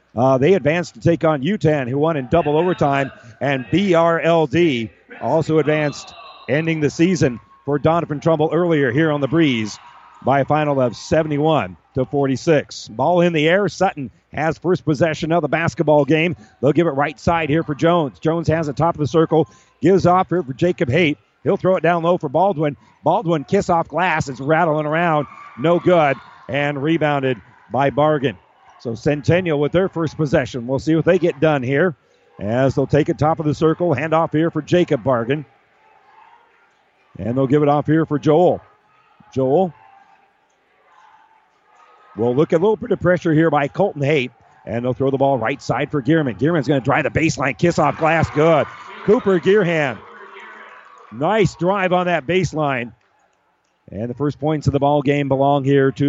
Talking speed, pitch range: 180 wpm, 140-170 Hz